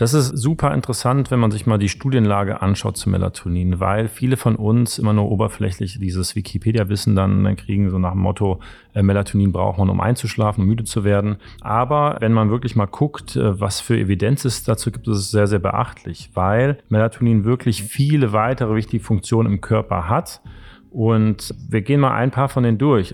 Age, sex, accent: 40-59, male, German